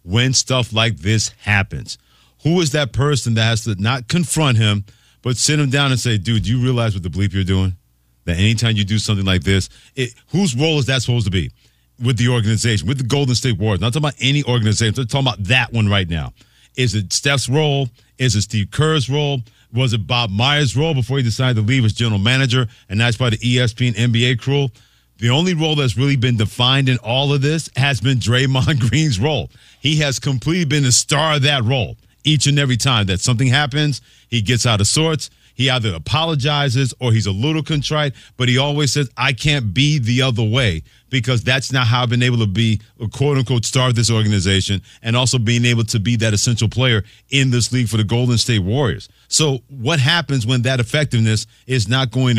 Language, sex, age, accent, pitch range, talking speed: English, male, 40-59, American, 110-135 Hz, 215 wpm